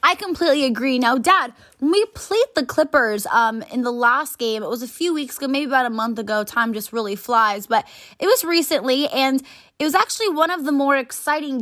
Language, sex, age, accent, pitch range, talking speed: English, female, 10-29, American, 230-295 Hz, 220 wpm